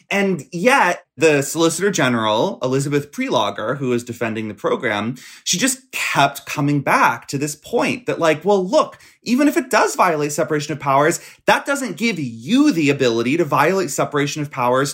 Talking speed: 175 wpm